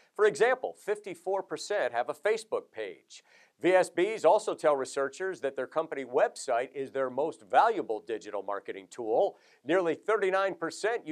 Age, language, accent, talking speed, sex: 50-69, English, American, 130 wpm, male